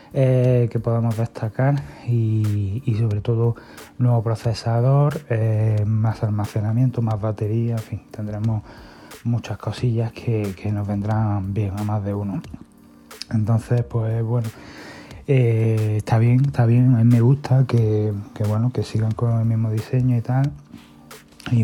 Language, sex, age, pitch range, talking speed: Spanish, male, 30-49, 110-120 Hz, 145 wpm